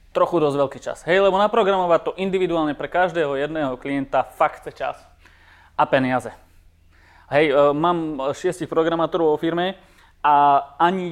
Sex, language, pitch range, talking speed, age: male, Czech, 135-170 Hz, 145 wpm, 20-39